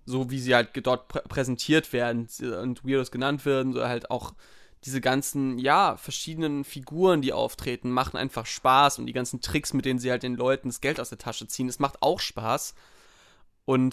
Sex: male